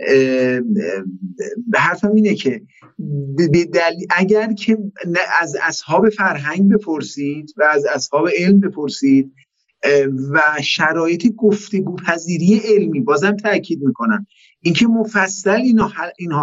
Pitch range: 165-210 Hz